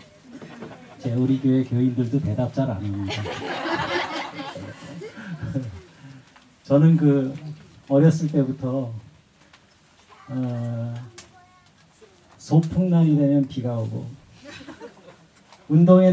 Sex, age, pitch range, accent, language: male, 40-59, 130-165 Hz, native, Korean